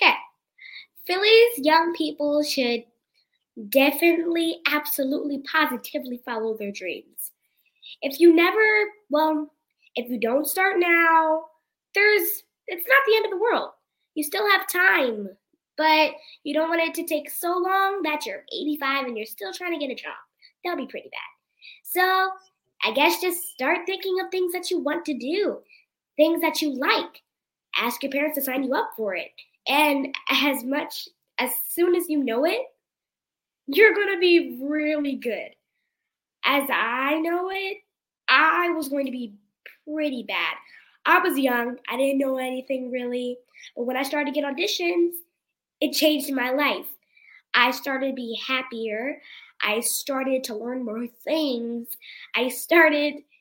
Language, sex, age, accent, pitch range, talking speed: English, female, 20-39, American, 260-345 Hz, 155 wpm